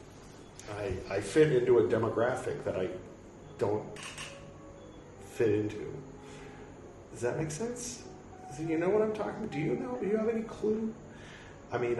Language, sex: English, male